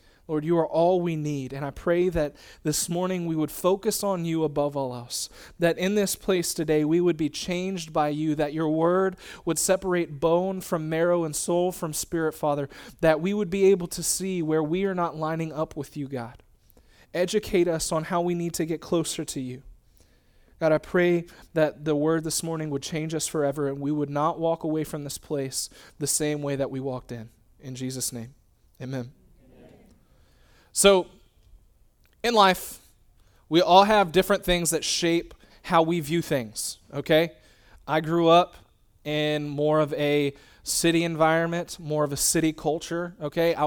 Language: English